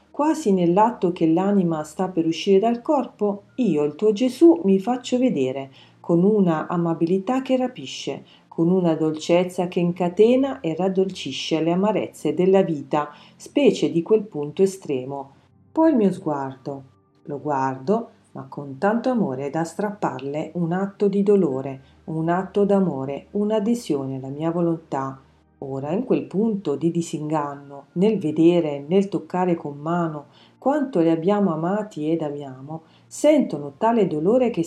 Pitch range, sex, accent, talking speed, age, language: 155-210 Hz, female, native, 140 wpm, 40-59, Italian